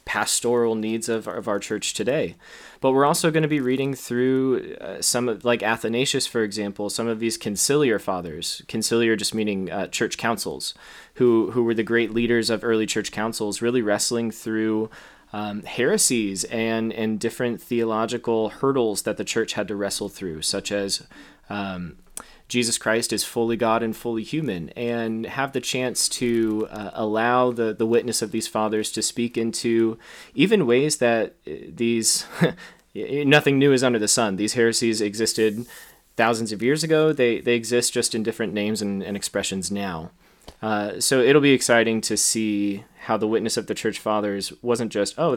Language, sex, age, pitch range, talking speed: English, male, 20-39, 110-120 Hz, 175 wpm